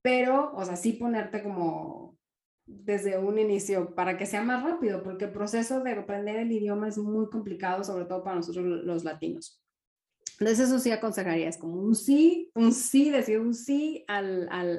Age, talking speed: 30-49, 185 wpm